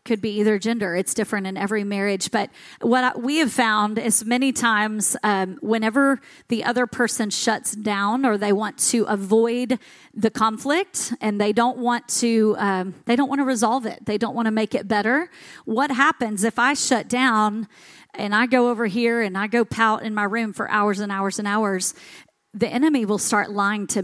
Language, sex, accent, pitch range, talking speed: English, female, American, 205-260 Hz, 200 wpm